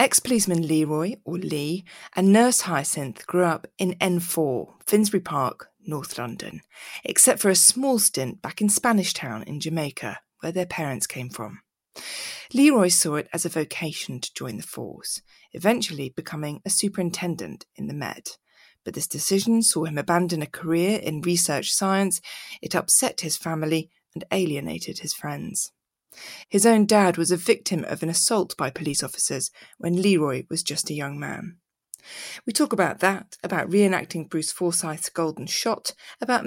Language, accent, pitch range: English, British, 155-200 Hz